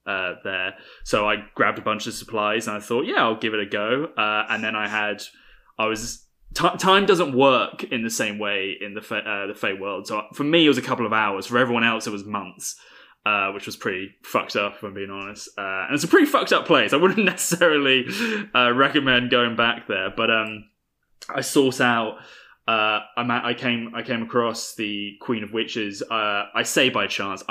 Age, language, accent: 10-29, English, British